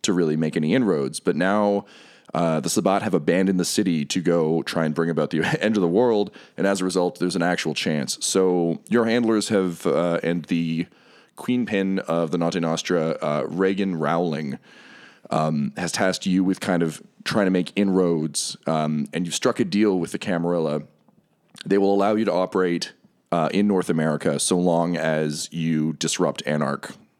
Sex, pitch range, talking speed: male, 80-95 Hz, 185 wpm